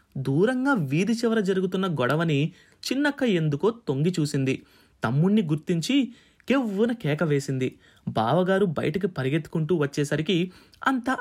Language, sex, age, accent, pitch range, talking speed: Telugu, male, 20-39, native, 140-195 Hz, 95 wpm